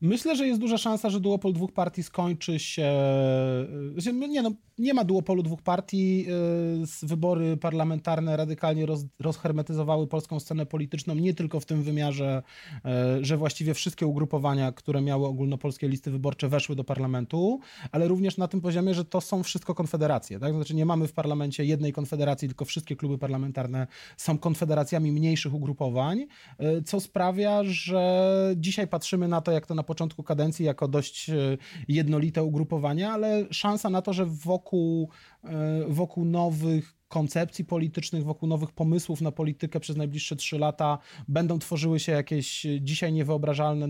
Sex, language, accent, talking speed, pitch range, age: male, Polish, native, 150 wpm, 150-180 Hz, 30-49